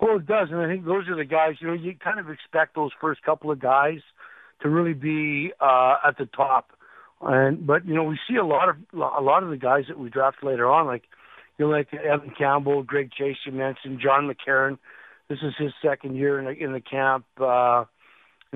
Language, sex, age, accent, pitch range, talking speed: English, male, 50-69, American, 135-155 Hz, 230 wpm